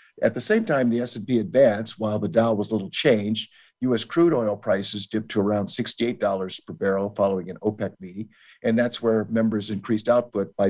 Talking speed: 190 wpm